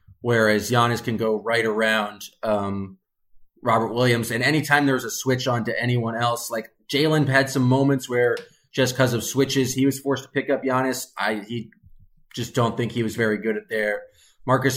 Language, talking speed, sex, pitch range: English, 185 wpm, male, 110-130 Hz